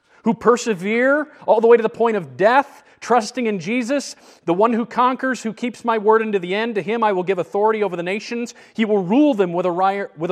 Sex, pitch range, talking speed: male, 180-225 Hz, 220 wpm